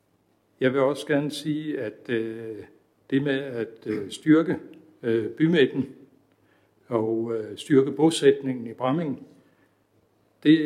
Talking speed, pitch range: 120 wpm, 110-140 Hz